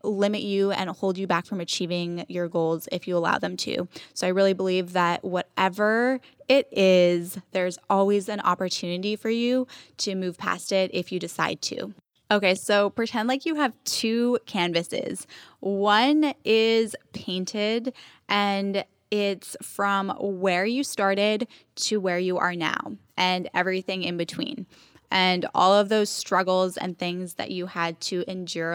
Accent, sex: American, female